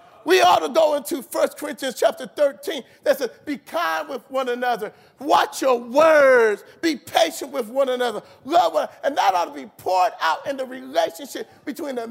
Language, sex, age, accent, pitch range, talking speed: English, male, 40-59, American, 250-340 Hz, 195 wpm